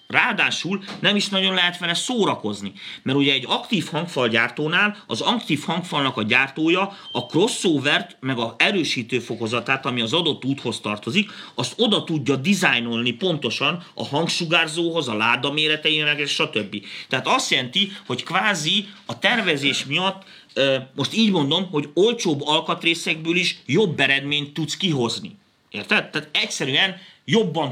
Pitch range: 130-175 Hz